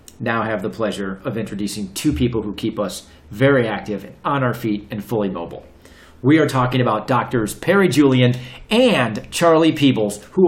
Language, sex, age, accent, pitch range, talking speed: English, male, 40-59, American, 125-170 Hz, 170 wpm